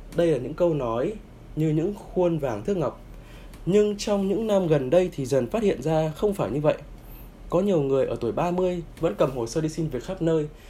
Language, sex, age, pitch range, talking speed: Vietnamese, male, 20-39, 125-180 Hz, 230 wpm